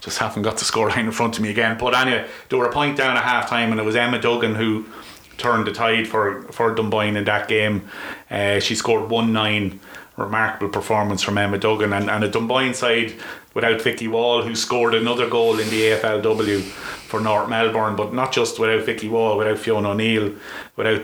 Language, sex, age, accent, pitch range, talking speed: English, male, 30-49, Irish, 105-115 Hz, 205 wpm